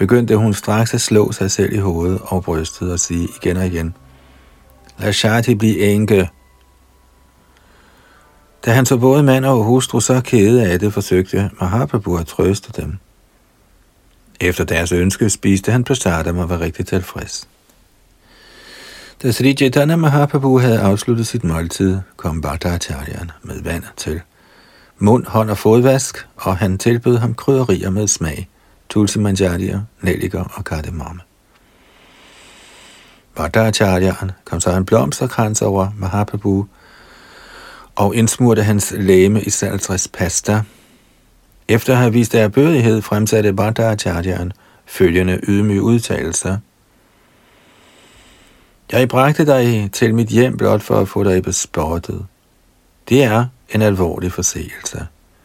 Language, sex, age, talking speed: Danish, male, 60-79, 130 wpm